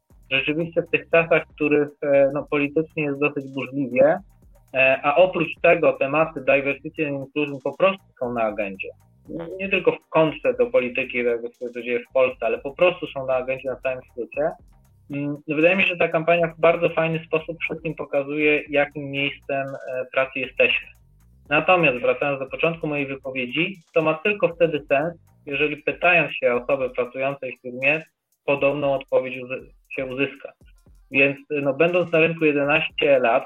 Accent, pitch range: native, 135-165 Hz